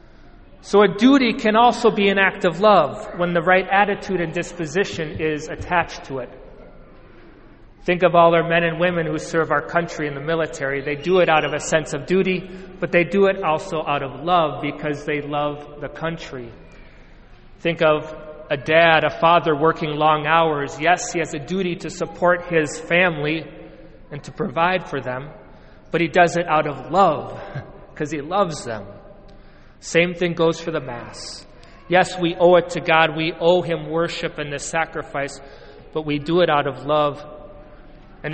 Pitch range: 145-175 Hz